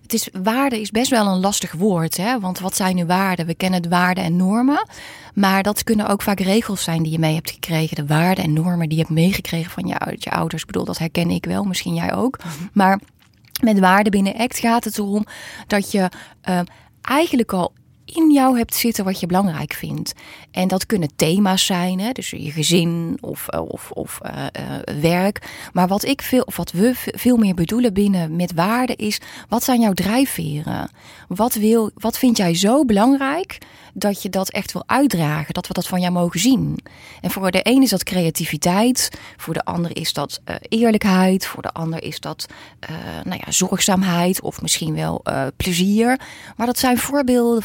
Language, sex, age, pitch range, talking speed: Dutch, female, 20-39, 175-225 Hz, 190 wpm